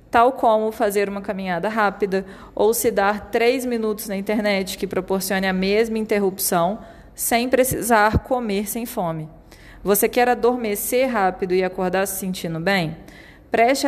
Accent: Brazilian